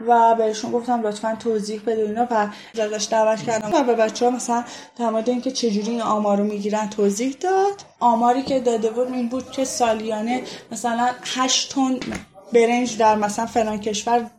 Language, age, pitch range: Persian, 10-29, 215-255 Hz